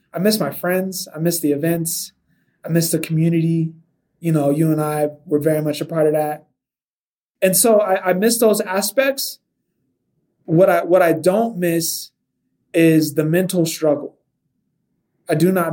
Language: English